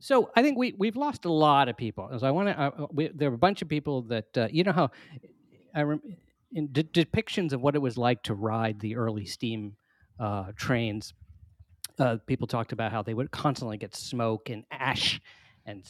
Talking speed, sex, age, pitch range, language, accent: 210 wpm, male, 40-59, 110-150 Hz, English, American